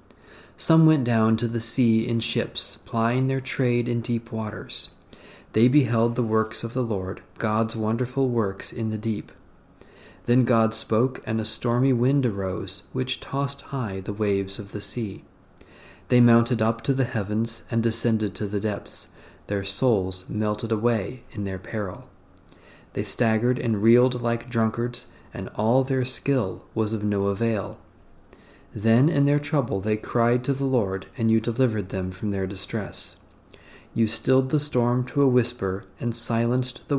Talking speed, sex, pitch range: 165 wpm, male, 105-125 Hz